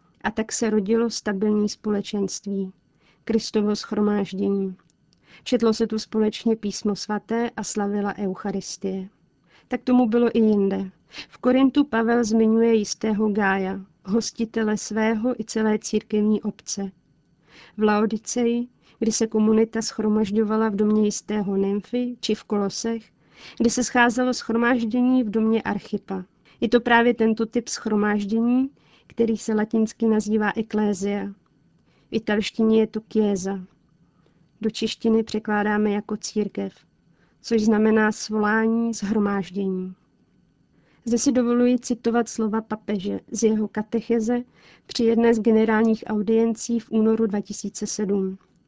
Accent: native